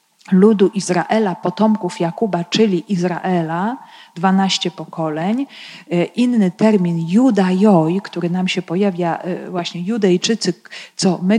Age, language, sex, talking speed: 40-59, Polish, female, 100 wpm